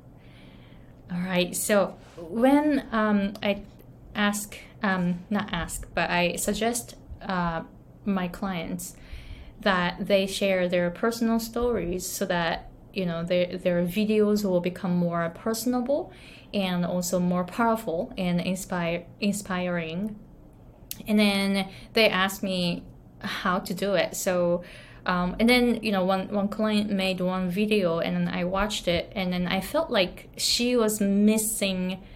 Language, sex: Japanese, female